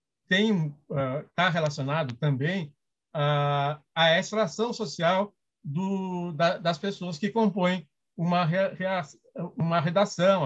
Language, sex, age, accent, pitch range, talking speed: Portuguese, male, 60-79, Brazilian, 140-185 Hz, 120 wpm